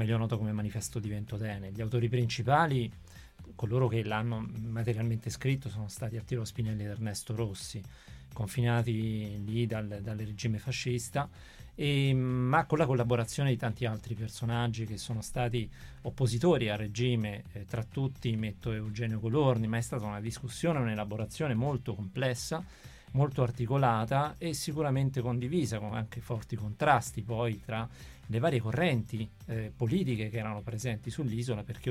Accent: native